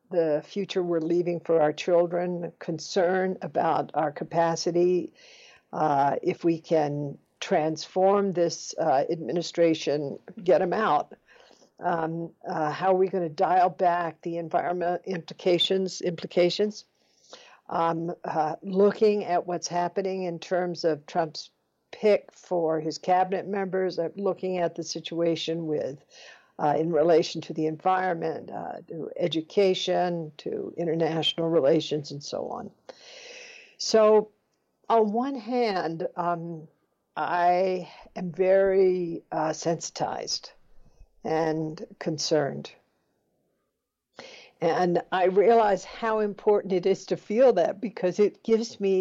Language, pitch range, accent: English, 165-195 Hz, American